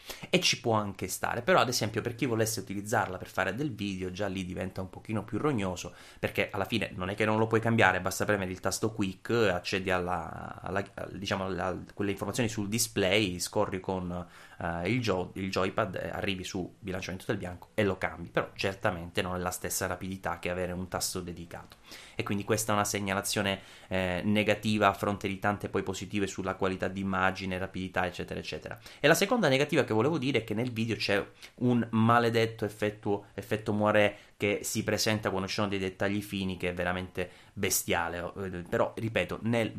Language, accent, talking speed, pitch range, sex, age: Italian, native, 195 wpm, 90-105 Hz, male, 20-39